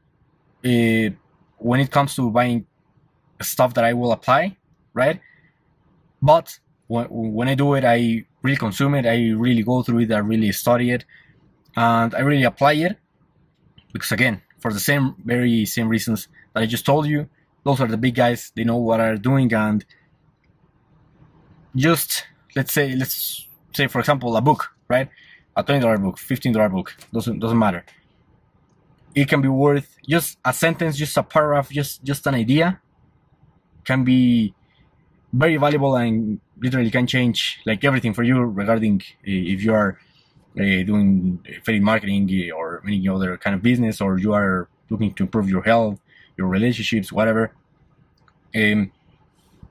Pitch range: 110-140 Hz